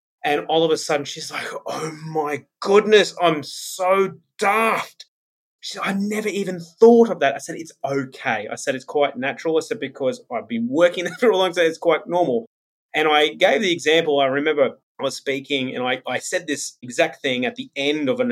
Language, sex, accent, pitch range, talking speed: English, male, Australian, 140-220 Hz, 215 wpm